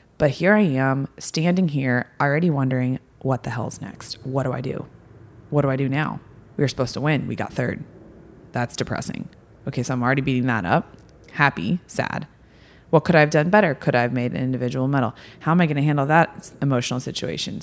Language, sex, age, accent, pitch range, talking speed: English, female, 20-39, American, 135-165 Hz, 210 wpm